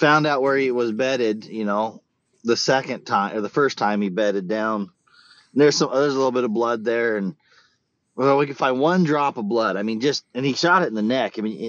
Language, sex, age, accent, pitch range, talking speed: English, male, 30-49, American, 110-135 Hz, 245 wpm